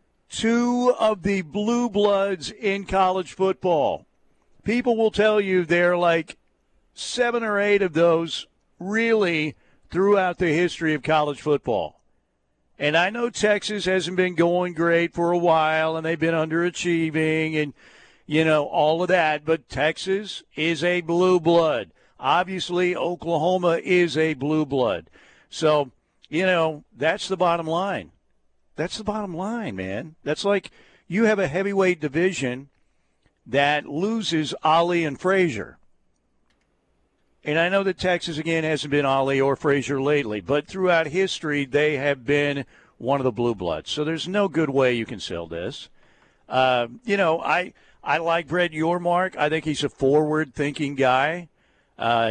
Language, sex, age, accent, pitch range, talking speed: English, male, 50-69, American, 145-185 Hz, 150 wpm